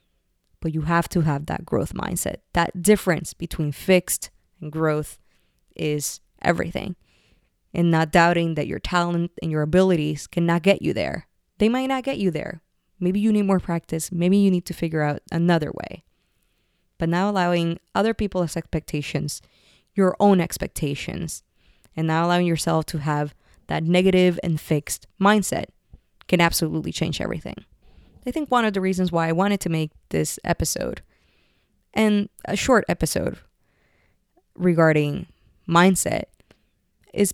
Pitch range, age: 155-195 Hz, 20-39